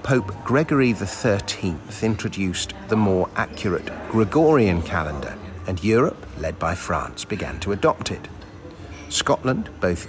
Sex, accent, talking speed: male, British, 120 wpm